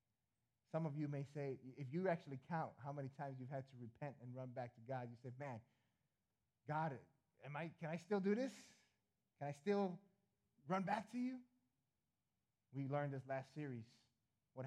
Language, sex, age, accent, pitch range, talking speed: English, male, 30-49, American, 130-200 Hz, 175 wpm